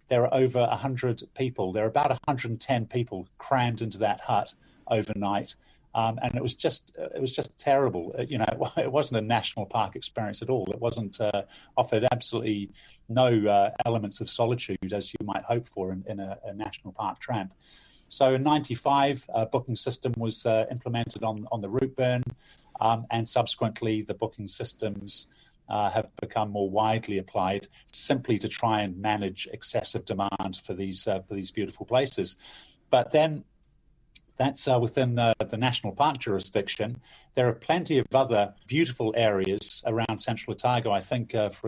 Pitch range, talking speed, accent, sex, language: 105-125 Hz, 175 wpm, British, male, English